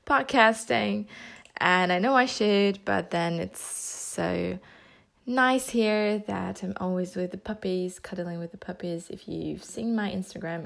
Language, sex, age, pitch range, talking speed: English, female, 20-39, 180-215 Hz, 150 wpm